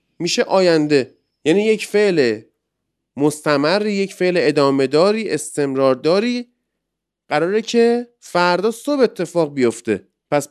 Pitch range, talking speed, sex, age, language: 120-180 Hz, 110 wpm, male, 30-49, Persian